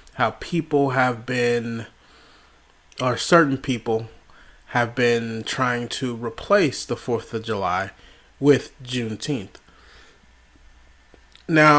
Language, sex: English, male